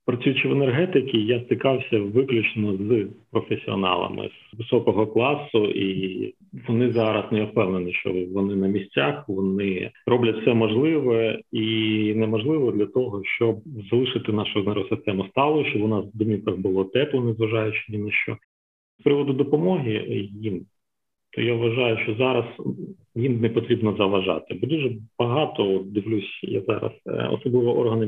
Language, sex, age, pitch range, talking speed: Ukrainian, male, 40-59, 105-125 Hz, 135 wpm